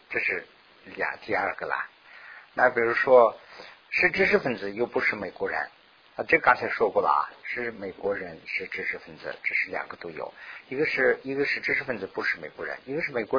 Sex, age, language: male, 50-69, Chinese